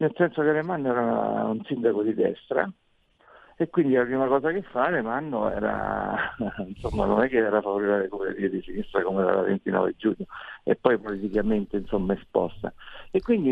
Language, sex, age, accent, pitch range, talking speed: Italian, male, 60-79, native, 115-140 Hz, 170 wpm